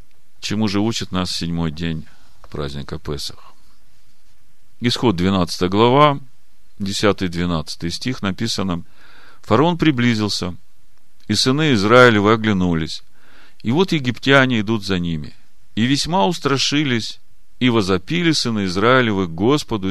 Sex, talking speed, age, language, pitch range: male, 110 wpm, 40-59, Russian, 100-140 Hz